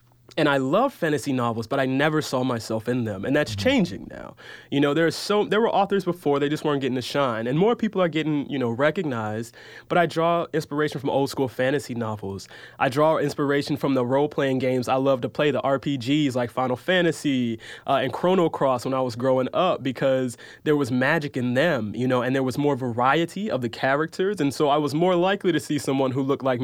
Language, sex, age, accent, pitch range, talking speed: English, male, 20-39, American, 125-155 Hz, 225 wpm